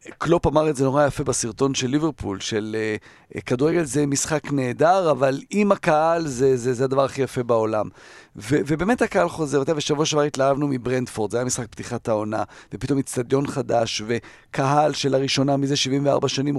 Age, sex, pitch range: 40-59, male, 135-180 Hz